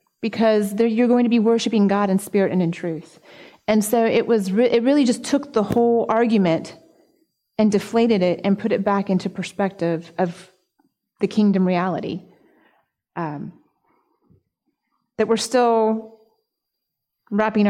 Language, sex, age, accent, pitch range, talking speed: English, female, 30-49, American, 185-225 Hz, 140 wpm